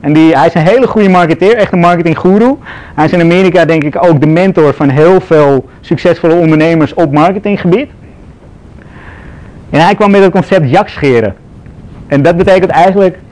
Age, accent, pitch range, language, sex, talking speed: 30-49, Dutch, 150-190 Hz, Dutch, male, 170 wpm